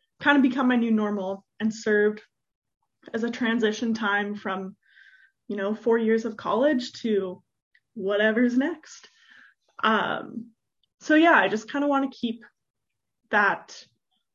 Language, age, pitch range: English, 20-39, 210-255 Hz